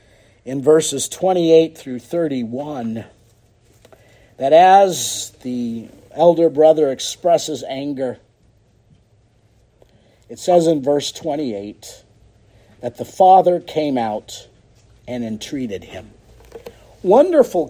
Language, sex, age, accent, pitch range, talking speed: English, male, 50-69, American, 110-160 Hz, 90 wpm